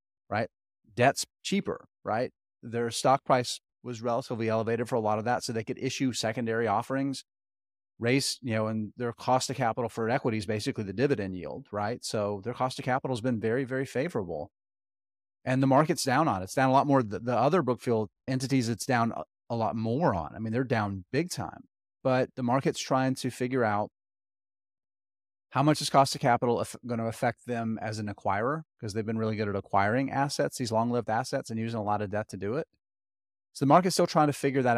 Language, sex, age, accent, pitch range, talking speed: English, male, 30-49, American, 105-130 Hz, 210 wpm